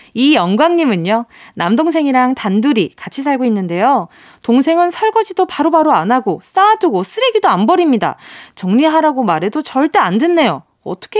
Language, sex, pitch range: Korean, female, 210-330 Hz